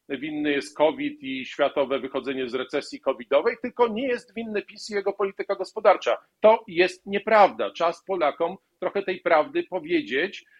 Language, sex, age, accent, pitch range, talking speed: Polish, male, 50-69, native, 140-200 Hz, 155 wpm